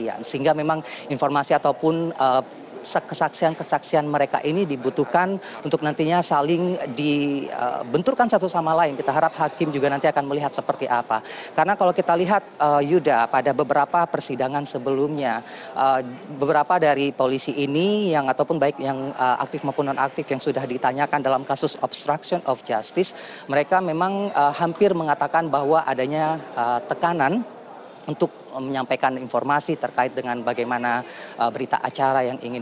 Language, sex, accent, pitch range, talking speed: Indonesian, female, native, 130-160 Hz, 140 wpm